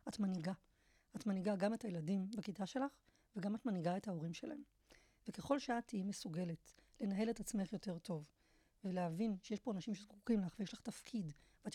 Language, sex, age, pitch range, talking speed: Hebrew, female, 30-49, 190-225 Hz, 175 wpm